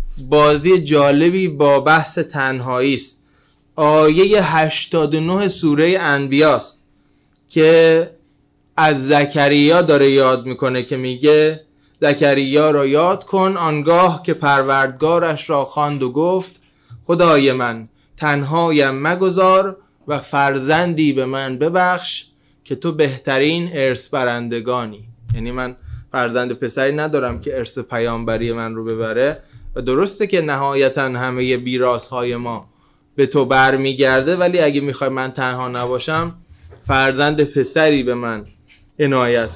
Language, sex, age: Persian, male, 20-39